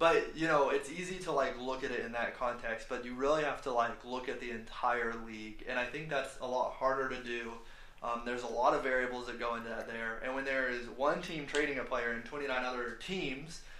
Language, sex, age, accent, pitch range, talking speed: English, male, 20-39, American, 120-145 Hz, 250 wpm